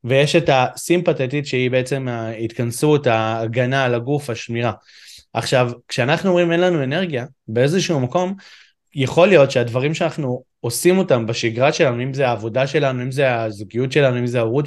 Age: 20-39